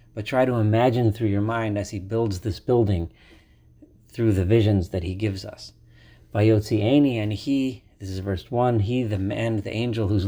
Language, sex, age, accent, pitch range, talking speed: English, male, 40-59, American, 100-115 Hz, 185 wpm